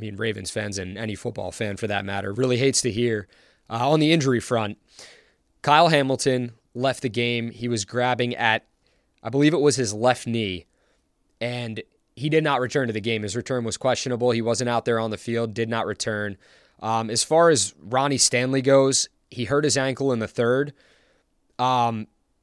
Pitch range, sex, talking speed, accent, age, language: 110-135 Hz, male, 195 wpm, American, 20-39, English